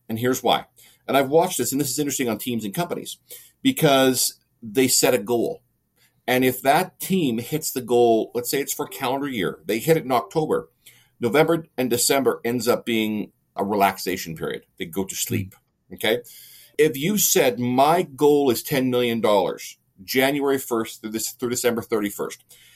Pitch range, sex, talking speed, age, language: 120-150 Hz, male, 175 wpm, 40-59, English